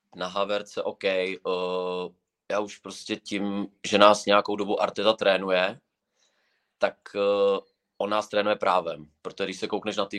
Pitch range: 95-105 Hz